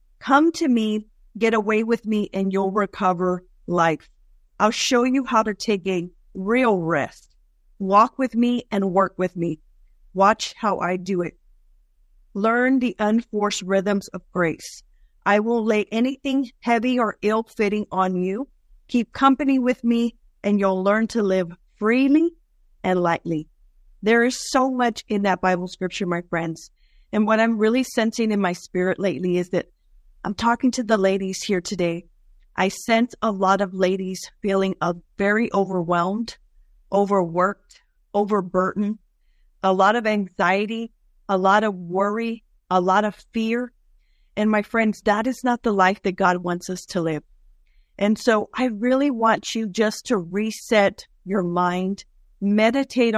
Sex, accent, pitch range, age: female, American, 185-230 Hz, 50-69